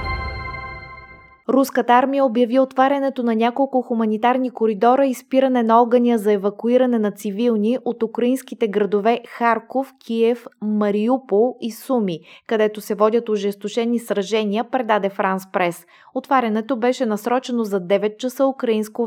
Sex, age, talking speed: female, 20-39, 125 wpm